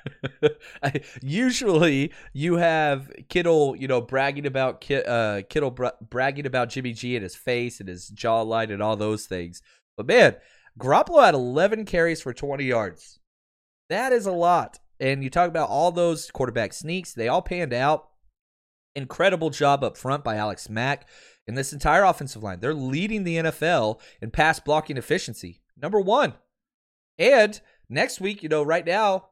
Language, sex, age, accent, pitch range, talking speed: English, male, 30-49, American, 120-180 Hz, 160 wpm